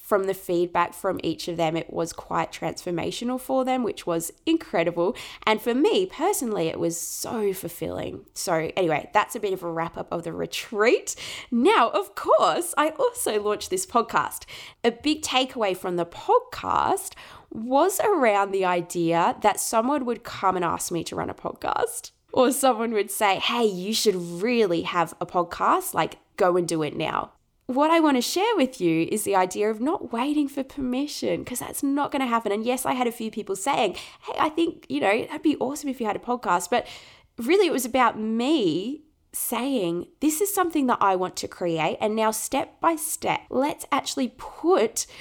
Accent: Australian